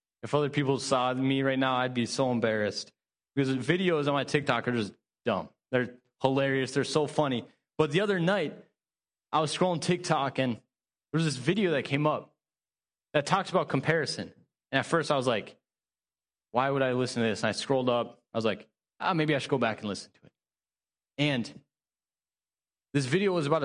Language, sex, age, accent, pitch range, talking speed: English, male, 20-39, American, 125-160 Hz, 200 wpm